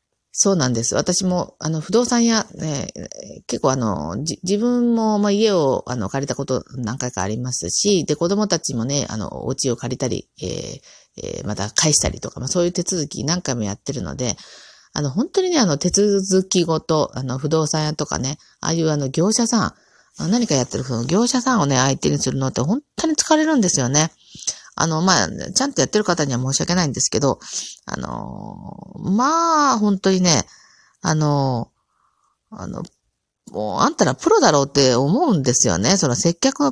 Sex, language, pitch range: female, Japanese, 130-200 Hz